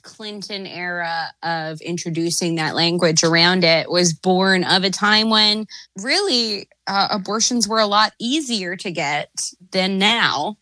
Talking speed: 140 wpm